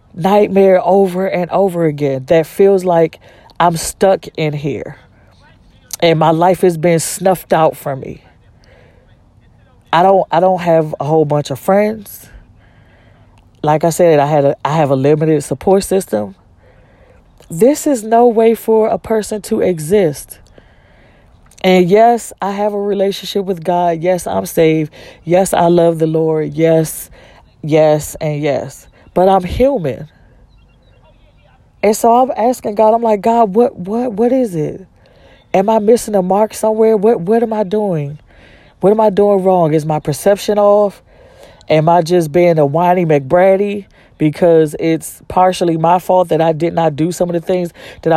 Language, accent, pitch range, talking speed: English, American, 155-195 Hz, 160 wpm